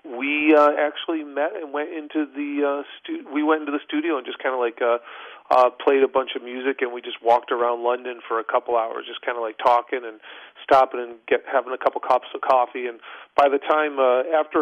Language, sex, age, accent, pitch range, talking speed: English, male, 40-59, American, 120-145 Hz, 240 wpm